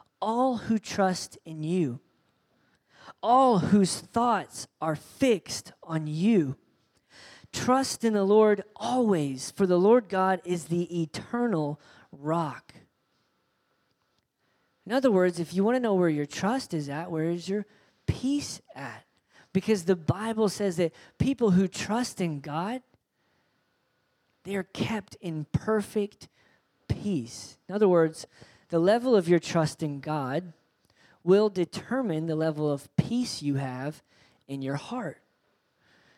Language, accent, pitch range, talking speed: English, American, 155-210 Hz, 130 wpm